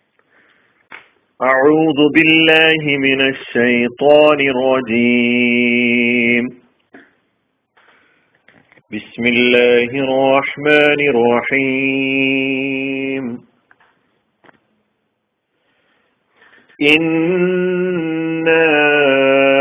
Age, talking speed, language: 40-59, 30 wpm, Malayalam